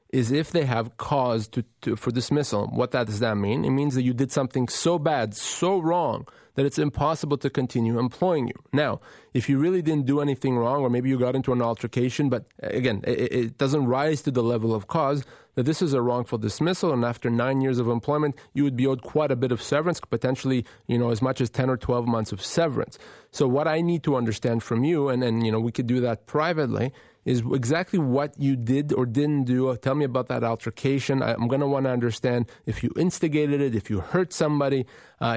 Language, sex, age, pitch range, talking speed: English, male, 30-49, 120-140 Hz, 230 wpm